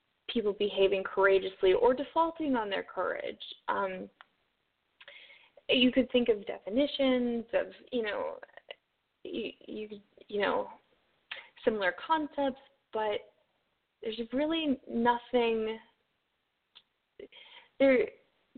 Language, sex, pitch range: English, female, 205-310 Hz